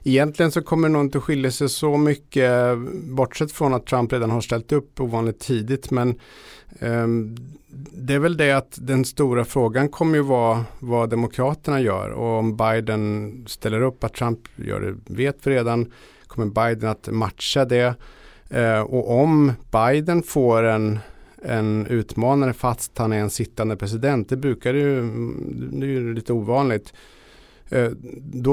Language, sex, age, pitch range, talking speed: Swedish, male, 50-69, 110-130 Hz, 160 wpm